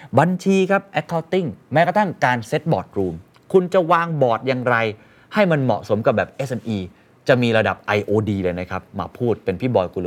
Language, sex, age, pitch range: Thai, male, 30-49, 100-140 Hz